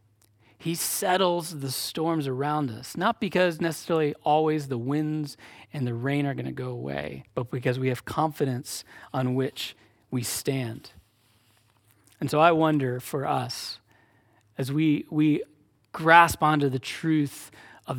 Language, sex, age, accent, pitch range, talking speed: English, male, 30-49, American, 110-150 Hz, 145 wpm